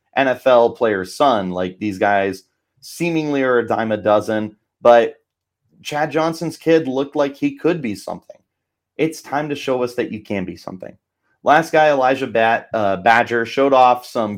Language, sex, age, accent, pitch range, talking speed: English, male, 30-49, American, 105-135 Hz, 170 wpm